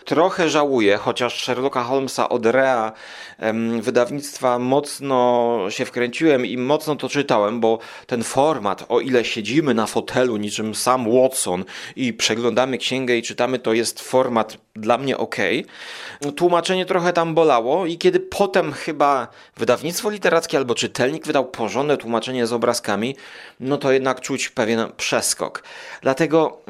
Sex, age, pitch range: male, 30-49, 120-170 Hz